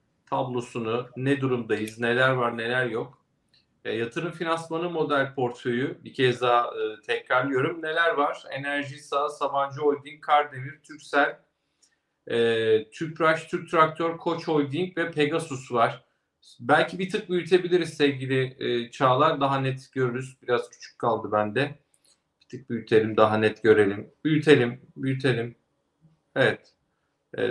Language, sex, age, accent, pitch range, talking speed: Turkish, male, 40-59, native, 120-155 Hz, 125 wpm